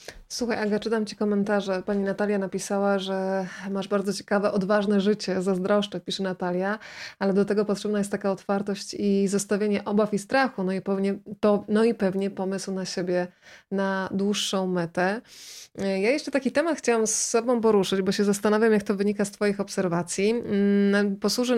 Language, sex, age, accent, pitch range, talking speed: Polish, female, 20-39, native, 190-210 Hz, 165 wpm